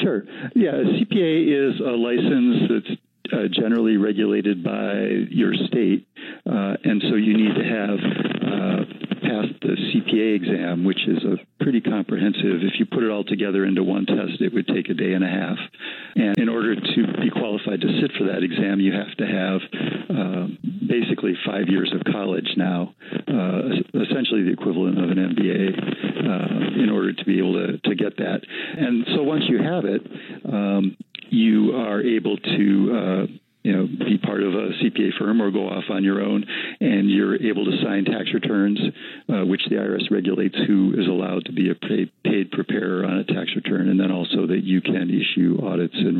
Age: 50-69